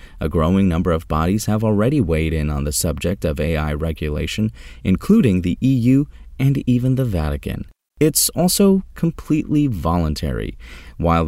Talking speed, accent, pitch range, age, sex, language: 145 wpm, American, 80-125 Hz, 30-49, male, English